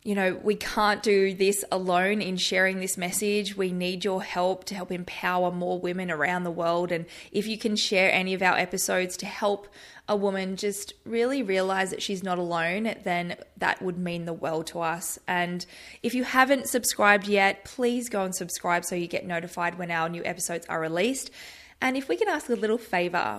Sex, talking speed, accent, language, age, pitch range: female, 205 wpm, Australian, English, 20-39, 175-210 Hz